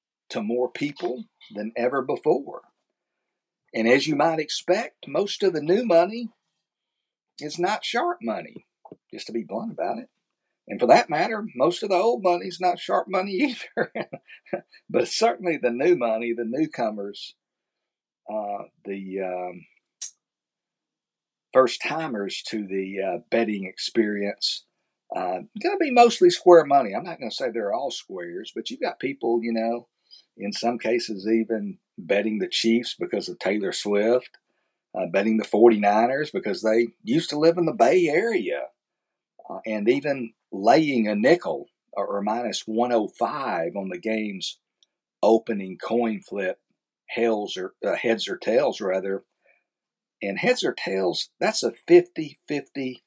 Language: English